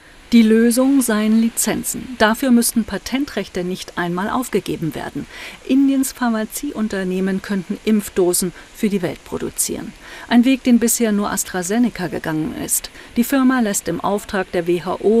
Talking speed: 135 wpm